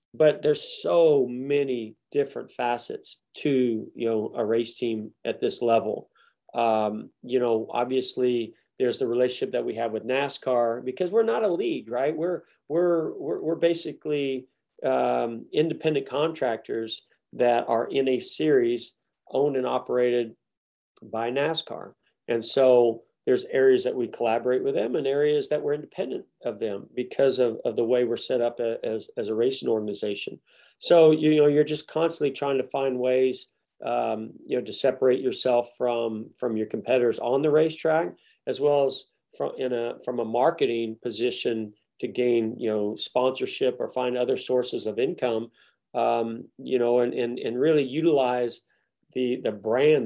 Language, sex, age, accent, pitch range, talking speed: English, male, 40-59, American, 115-150 Hz, 165 wpm